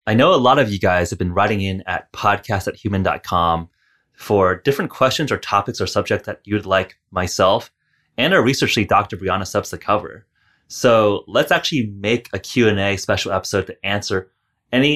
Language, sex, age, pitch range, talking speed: English, male, 30-49, 95-120 Hz, 180 wpm